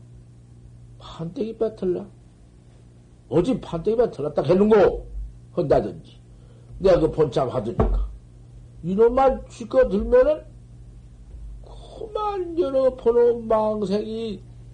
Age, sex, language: 60-79, male, Korean